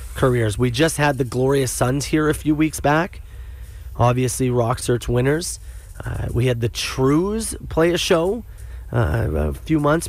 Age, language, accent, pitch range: 30-49, English, American, 90-150 Hz